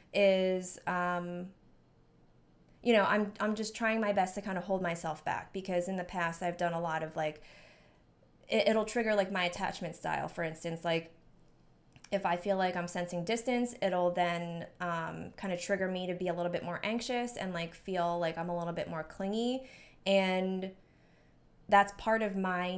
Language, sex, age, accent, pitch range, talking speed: English, female, 20-39, American, 175-205 Hz, 190 wpm